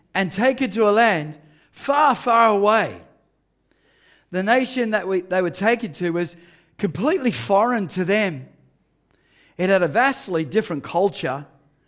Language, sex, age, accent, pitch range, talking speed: English, male, 40-59, Australian, 185-245 Hz, 135 wpm